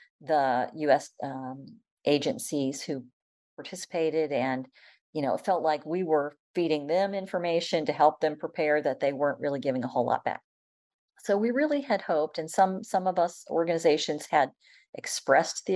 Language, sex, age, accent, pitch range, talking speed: English, female, 50-69, American, 145-195 Hz, 170 wpm